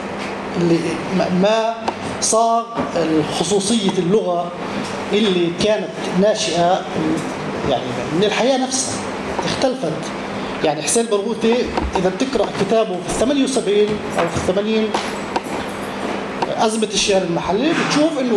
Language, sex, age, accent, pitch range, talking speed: English, male, 30-49, Lebanese, 180-230 Hz, 95 wpm